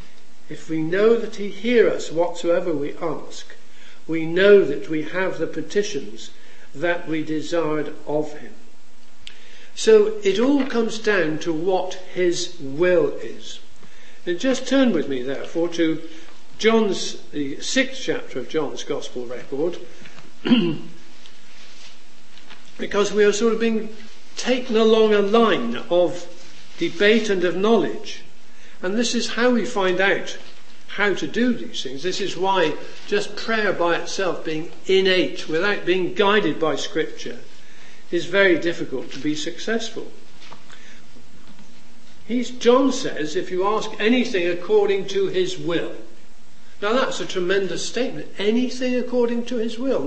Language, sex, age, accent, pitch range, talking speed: English, male, 60-79, British, 175-240 Hz, 135 wpm